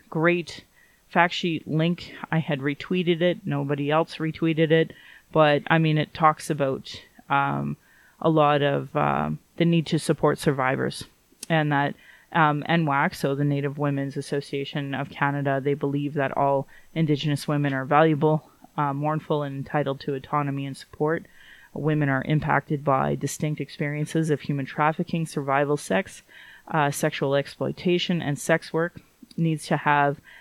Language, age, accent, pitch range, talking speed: English, 30-49, American, 145-165 Hz, 150 wpm